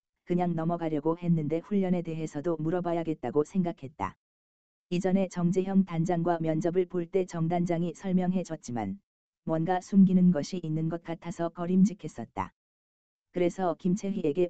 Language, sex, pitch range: Korean, female, 155-180 Hz